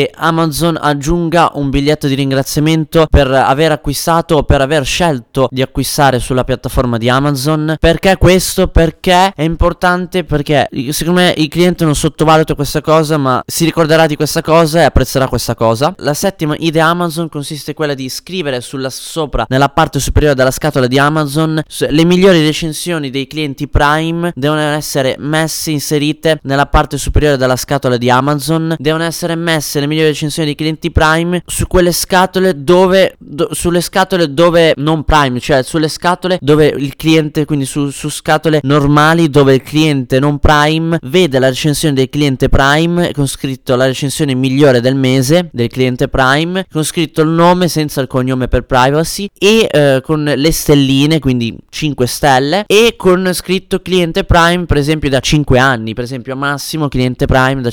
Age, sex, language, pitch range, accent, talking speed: 20-39, male, Italian, 135-165 Hz, native, 170 wpm